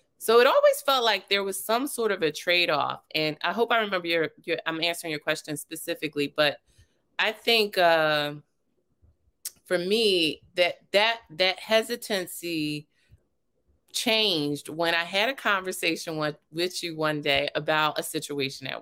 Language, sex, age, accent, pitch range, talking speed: English, female, 20-39, American, 155-215 Hz, 160 wpm